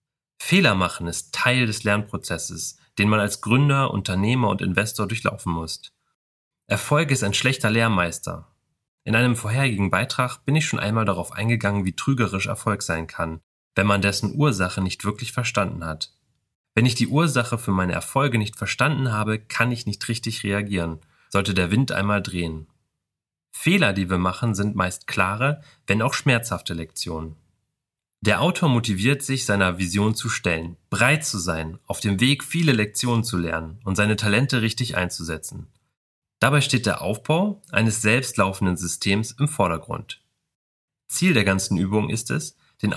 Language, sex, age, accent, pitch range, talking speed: German, male, 30-49, German, 95-125 Hz, 160 wpm